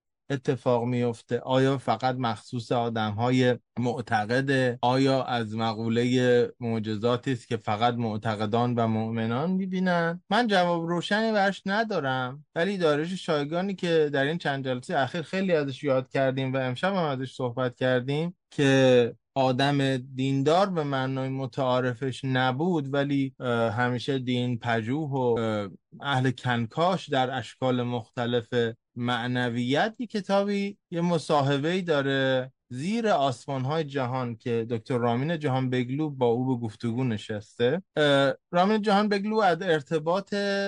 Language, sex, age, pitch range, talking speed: Persian, male, 20-39, 120-160 Hz, 120 wpm